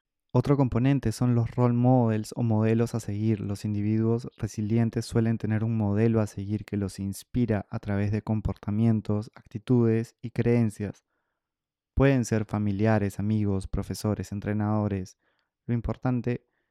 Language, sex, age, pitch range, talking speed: Spanish, male, 20-39, 105-115 Hz, 135 wpm